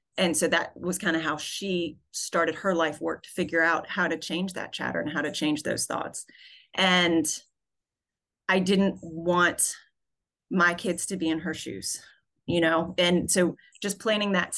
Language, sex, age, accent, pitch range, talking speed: English, female, 30-49, American, 160-180 Hz, 180 wpm